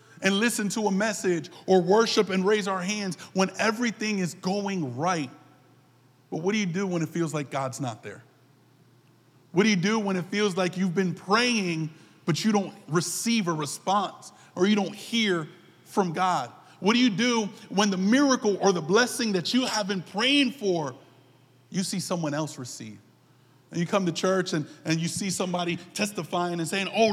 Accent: American